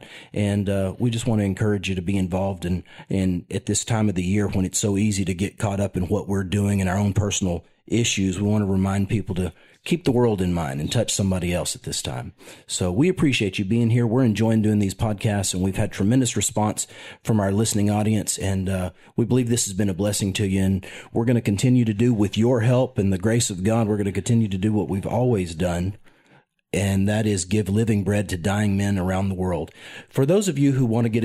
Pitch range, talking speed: 95-110 Hz, 250 wpm